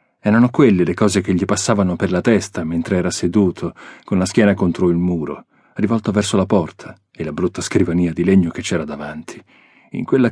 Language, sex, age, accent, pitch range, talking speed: Italian, male, 40-59, native, 85-105 Hz, 200 wpm